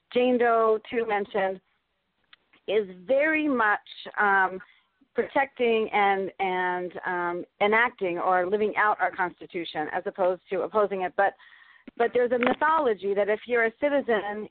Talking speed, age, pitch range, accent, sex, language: 135 wpm, 40-59, 205-260 Hz, American, female, English